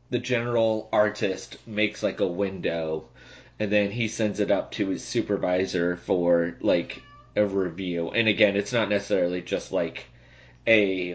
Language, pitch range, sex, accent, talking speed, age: English, 95-115 Hz, male, American, 150 wpm, 30-49